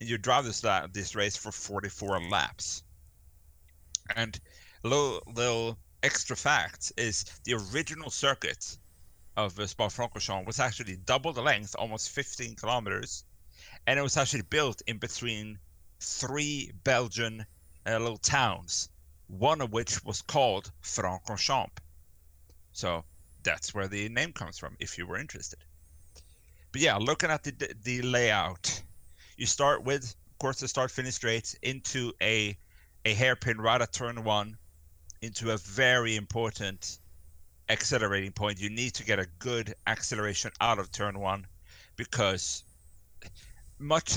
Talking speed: 140 wpm